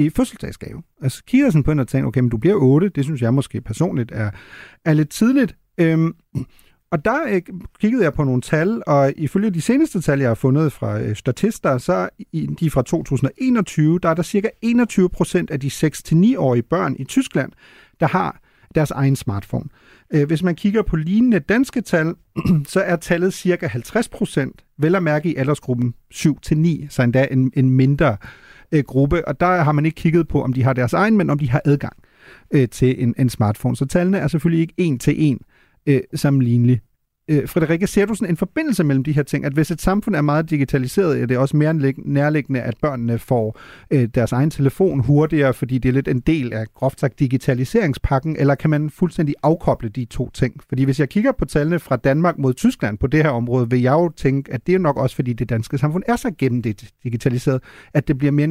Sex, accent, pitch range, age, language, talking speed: male, native, 130-170 Hz, 40-59, Danish, 215 wpm